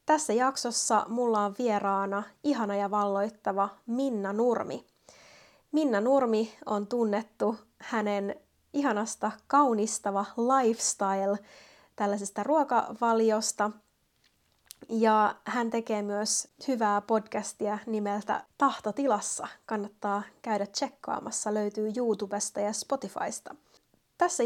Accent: native